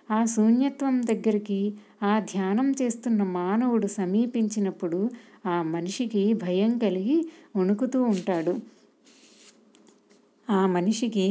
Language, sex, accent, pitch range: Telugu, female, native, 190-230 Hz